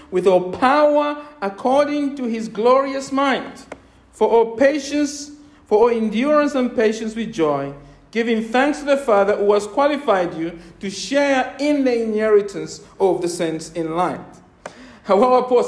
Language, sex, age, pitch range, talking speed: English, male, 50-69, 195-265 Hz, 150 wpm